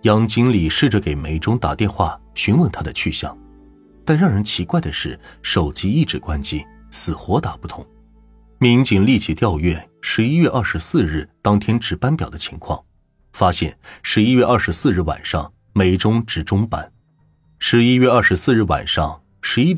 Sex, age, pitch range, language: male, 30-49, 85-115 Hz, Chinese